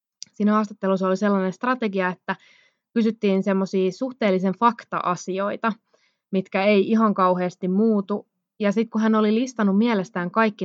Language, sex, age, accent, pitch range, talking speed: Finnish, female, 20-39, native, 185-220 Hz, 130 wpm